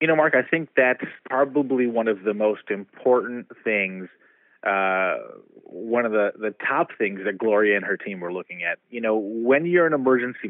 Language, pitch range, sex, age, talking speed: English, 105-130 Hz, male, 30-49, 195 wpm